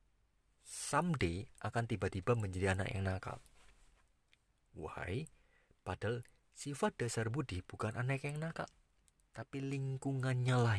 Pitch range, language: 95-130 Hz, Indonesian